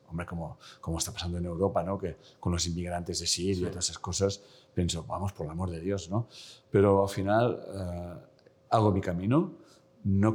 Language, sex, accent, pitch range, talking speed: Spanish, male, Spanish, 95-130 Hz, 195 wpm